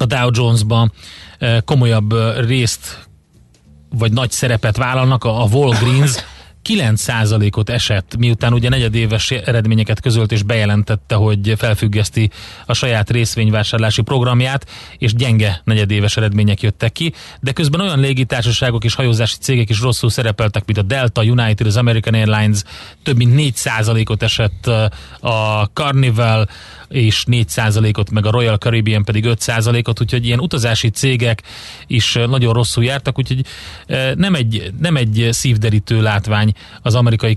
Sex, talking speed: male, 130 wpm